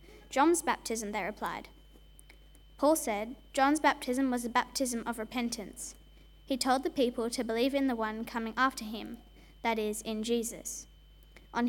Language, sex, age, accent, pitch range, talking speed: English, female, 20-39, Australian, 225-275 Hz, 155 wpm